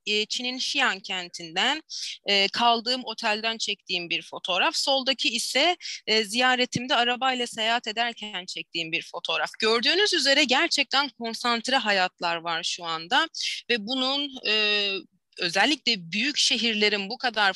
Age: 30-49